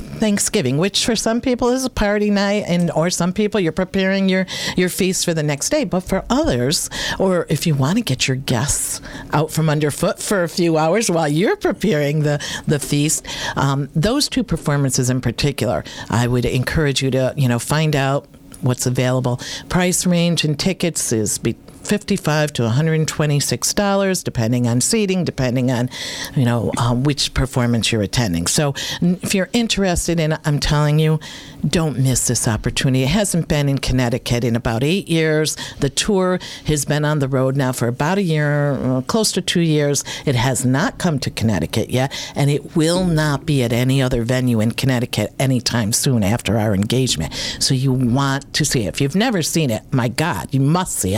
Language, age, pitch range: English, 50-69, 130-180 Hz